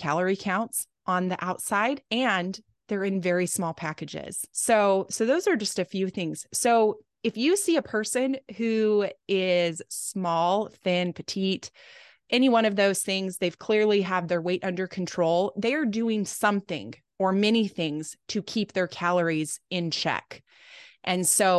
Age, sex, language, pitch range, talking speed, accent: 20-39, female, English, 170-215 Hz, 160 wpm, American